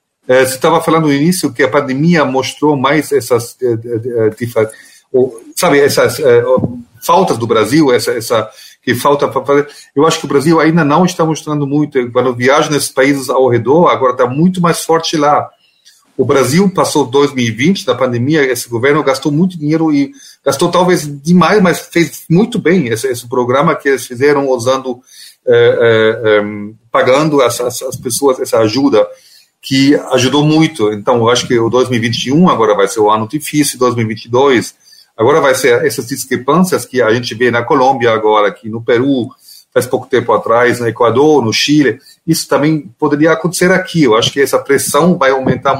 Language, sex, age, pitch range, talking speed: Portuguese, male, 40-59, 125-175 Hz, 170 wpm